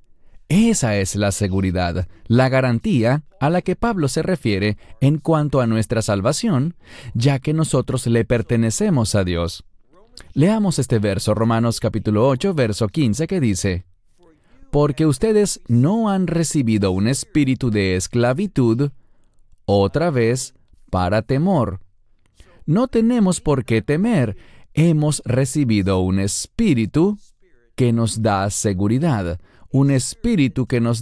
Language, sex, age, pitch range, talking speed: English, male, 30-49, 100-145 Hz, 125 wpm